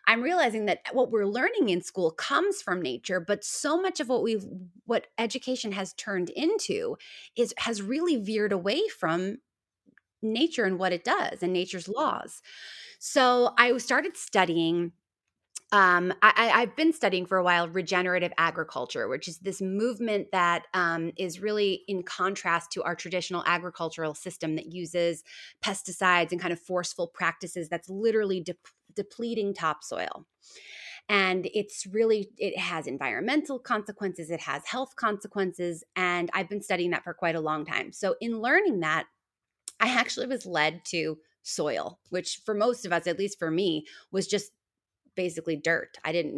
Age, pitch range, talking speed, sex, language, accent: 30-49, 175-225 Hz, 160 wpm, female, English, American